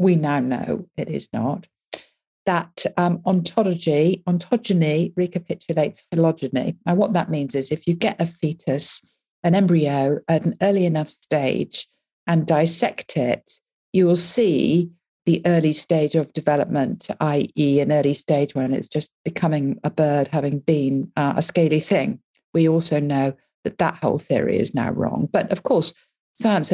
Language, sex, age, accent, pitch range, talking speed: English, female, 50-69, British, 150-180 Hz, 155 wpm